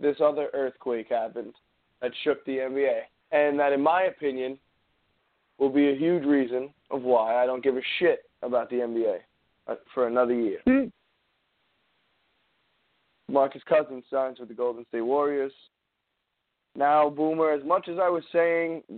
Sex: male